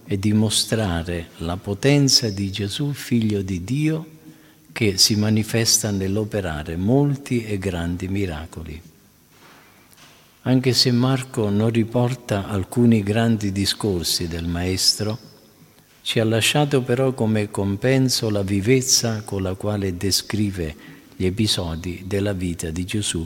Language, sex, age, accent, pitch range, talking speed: Italian, male, 50-69, native, 95-120 Hz, 115 wpm